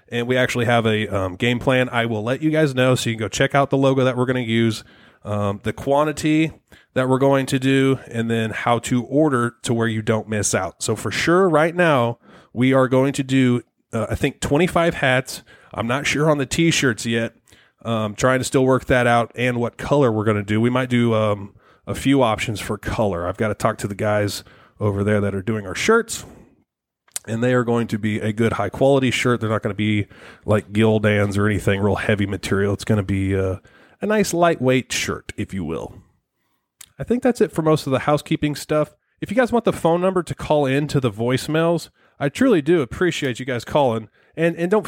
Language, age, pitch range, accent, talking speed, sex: English, 30-49, 110-140 Hz, American, 230 wpm, male